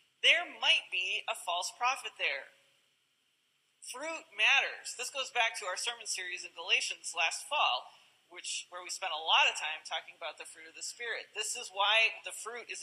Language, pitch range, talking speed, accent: English, 190-250 Hz, 190 wpm, American